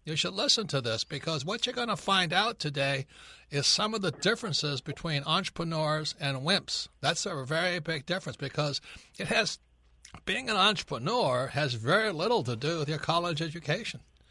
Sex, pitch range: male, 135-165 Hz